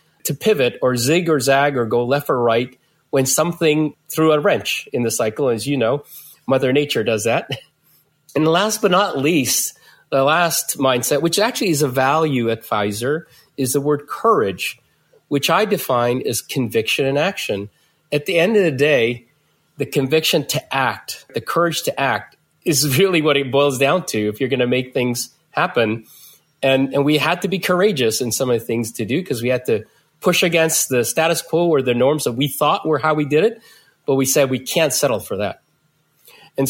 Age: 30-49